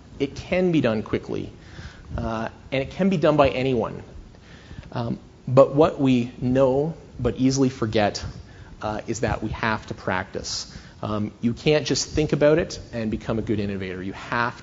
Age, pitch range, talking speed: 40-59, 105-130 Hz, 170 wpm